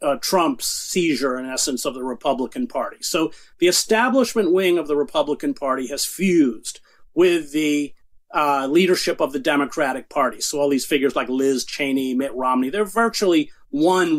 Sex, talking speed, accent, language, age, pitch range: male, 165 wpm, American, English, 40-59, 145-220 Hz